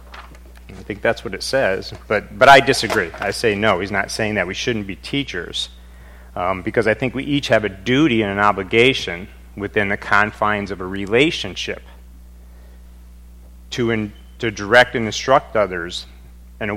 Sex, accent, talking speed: male, American, 170 wpm